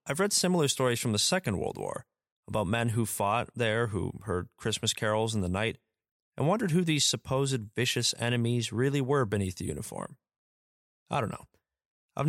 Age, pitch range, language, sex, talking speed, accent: 30-49, 100-140 Hz, English, male, 180 wpm, American